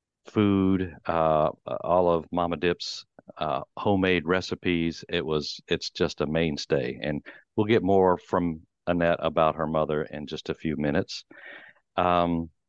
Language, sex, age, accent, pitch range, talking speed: English, male, 50-69, American, 80-95 Hz, 140 wpm